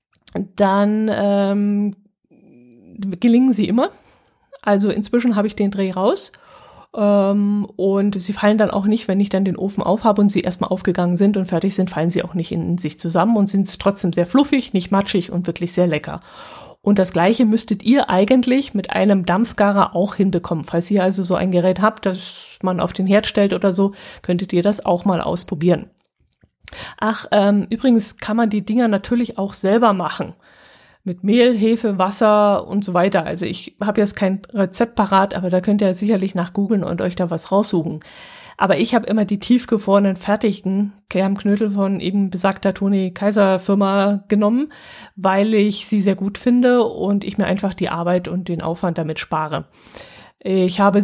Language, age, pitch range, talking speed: German, 20-39, 185-210 Hz, 185 wpm